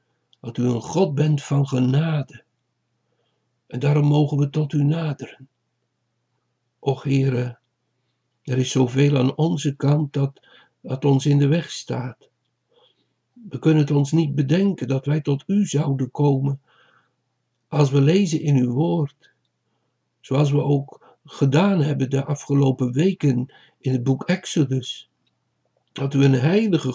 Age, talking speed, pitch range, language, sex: 60-79, 140 wpm, 130-155 Hz, Dutch, male